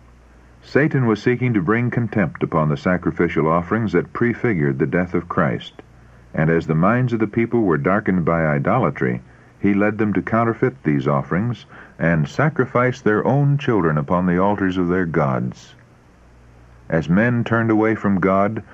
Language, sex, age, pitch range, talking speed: English, male, 60-79, 75-110 Hz, 165 wpm